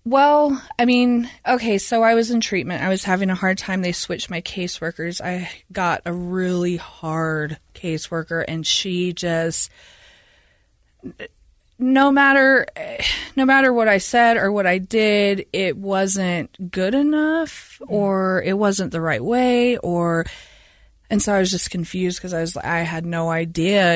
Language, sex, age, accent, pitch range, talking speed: English, female, 20-39, American, 170-210 Hz, 160 wpm